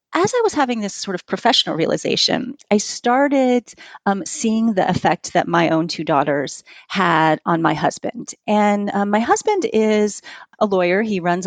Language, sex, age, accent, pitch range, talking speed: English, female, 30-49, American, 180-250 Hz, 175 wpm